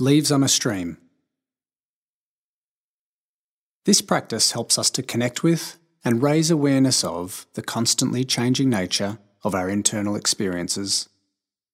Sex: male